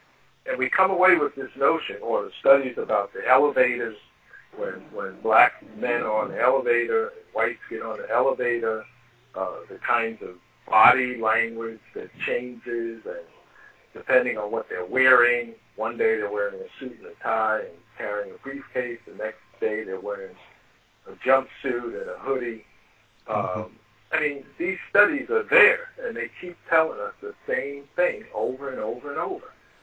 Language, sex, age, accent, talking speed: English, male, 60-79, American, 170 wpm